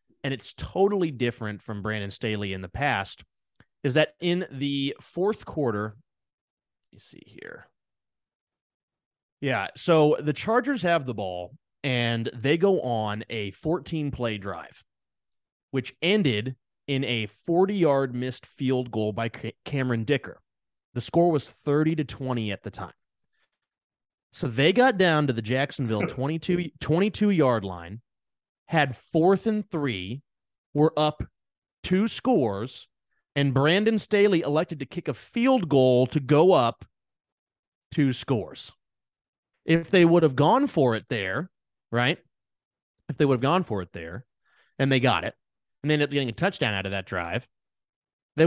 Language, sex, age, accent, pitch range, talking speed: English, male, 20-39, American, 115-165 Hz, 145 wpm